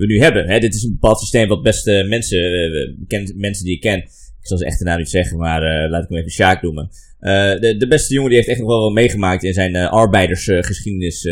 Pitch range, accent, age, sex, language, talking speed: 85-110 Hz, Dutch, 20-39, male, Dutch, 255 wpm